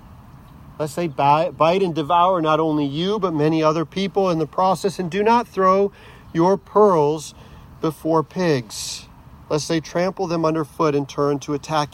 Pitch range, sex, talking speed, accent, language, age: 155-190 Hz, male, 160 wpm, American, English, 40-59